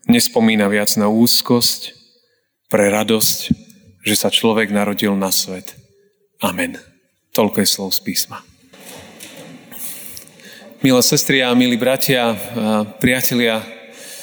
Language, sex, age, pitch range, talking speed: Slovak, male, 30-49, 115-145 Hz, 95 wpm